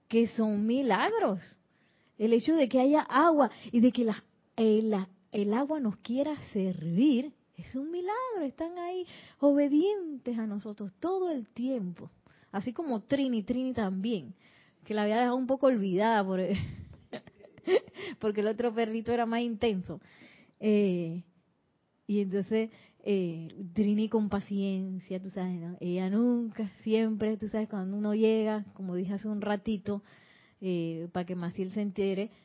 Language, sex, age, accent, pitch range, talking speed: Spanish, female, 30-49, American, 205-285 Hz, 140 wpm